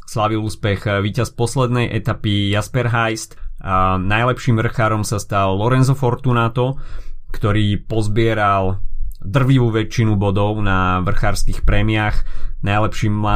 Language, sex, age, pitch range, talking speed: Slovak, male, 30-49, 100-120 Hz, 105 wpm